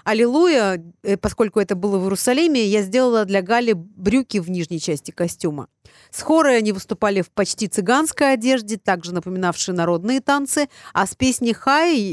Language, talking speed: Russian, 155 wpm